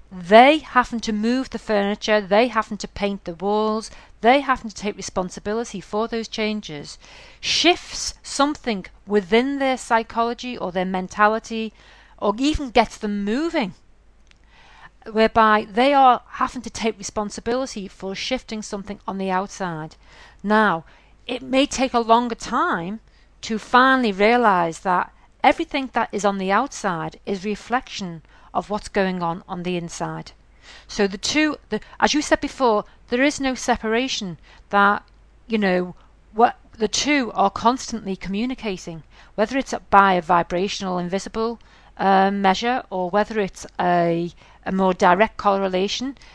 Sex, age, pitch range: female, 40-59, 195-240 Hz